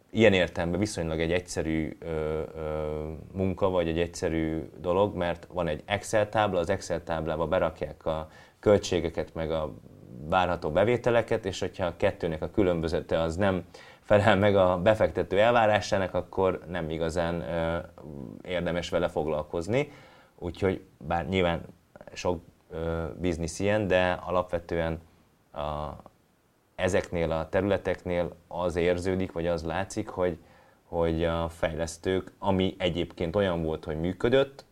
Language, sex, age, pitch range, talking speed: Hungarian, male, 30-49, 85-105 Hz, 130 wpm